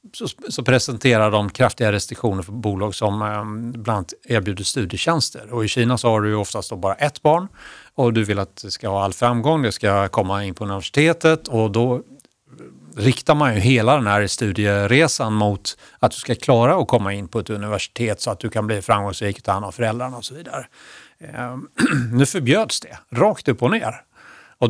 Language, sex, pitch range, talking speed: Swedish, male, 105-125 Hz, 190 wpm